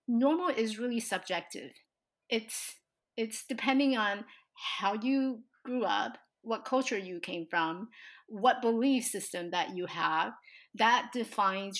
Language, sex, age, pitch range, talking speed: English, female, 30-49, 190-265 Hz, 125 wpm